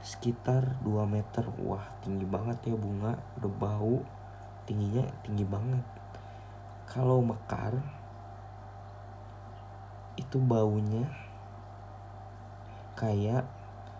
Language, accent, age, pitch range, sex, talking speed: Indonesian, native, 20-39, 100-115 Hz, male, 75 wpm